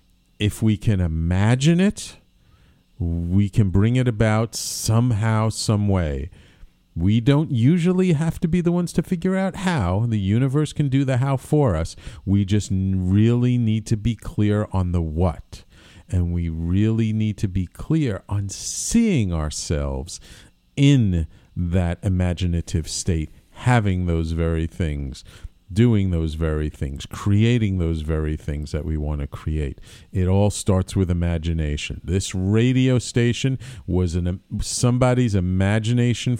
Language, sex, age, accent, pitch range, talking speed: English, male, 50-69, American, 85-115 Hz, 140 wpm